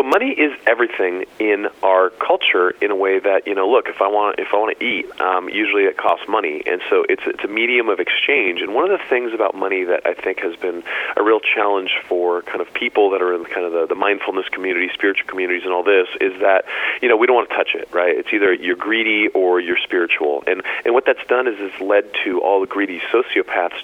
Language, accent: English, American